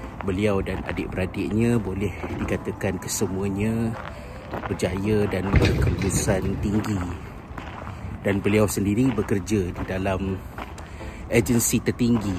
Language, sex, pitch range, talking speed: Malay, male, 95-110 Hz, 85 wpm